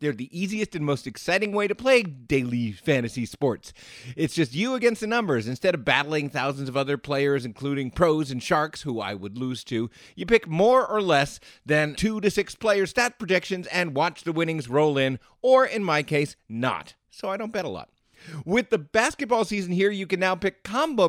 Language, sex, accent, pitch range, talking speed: English, male, American, 130-205 Hz, 210 wpm